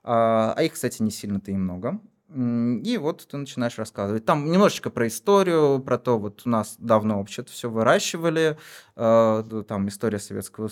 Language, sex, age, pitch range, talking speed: Russian, male, 20-39, 105-125 Hz, 160 wpm